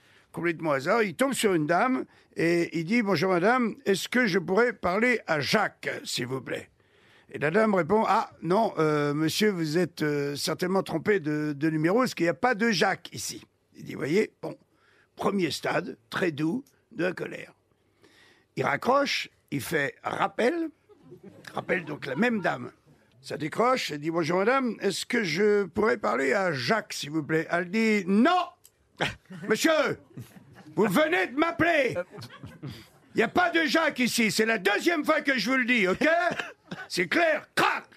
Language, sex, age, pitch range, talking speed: French, male, 60-79, 170-265 Hz, 175 wpm